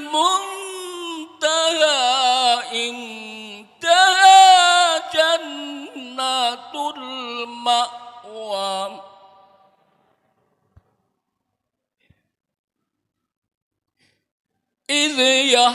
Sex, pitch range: male, 220-265 Hz